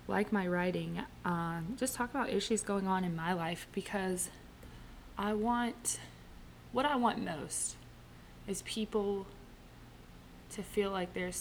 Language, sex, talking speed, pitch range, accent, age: English, female, 135 wpm, 165-210 Hz, American, 20-39